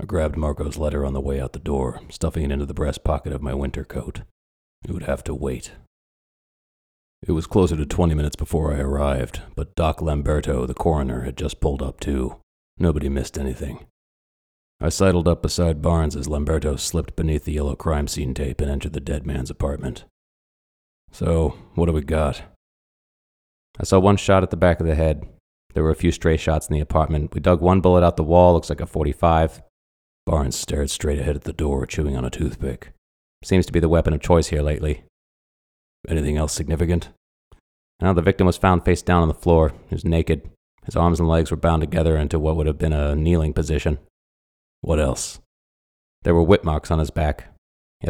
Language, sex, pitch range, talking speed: English, male, 70-85 Hz, 205 wpm